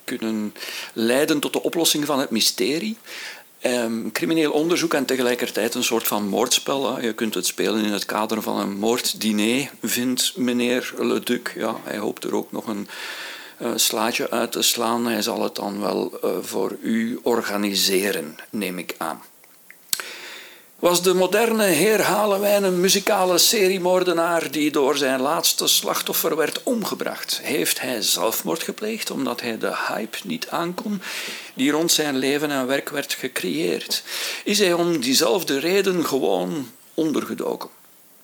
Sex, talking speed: male, 150 wpm